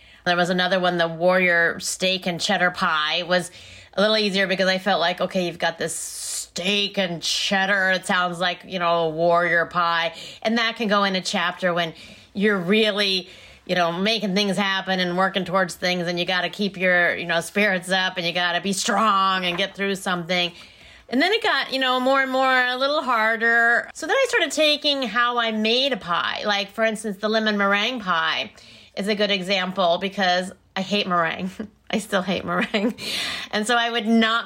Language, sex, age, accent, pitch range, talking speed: English, female, 30-49, American, 170-215 Hz, 205 wpm